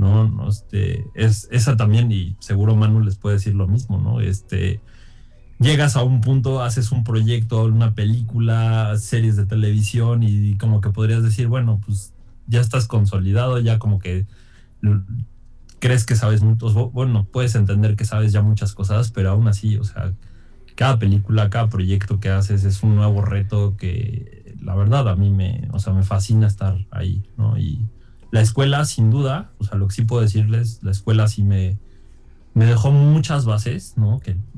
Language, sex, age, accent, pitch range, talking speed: Spanish, male, 20-39, Mexican, 100-120 Hz, 180 wpm